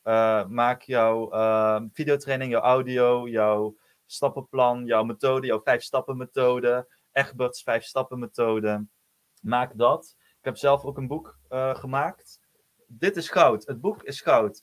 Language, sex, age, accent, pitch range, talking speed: Dutch, male, 20-39, Dutch, 115-145 Hz, 125 wpm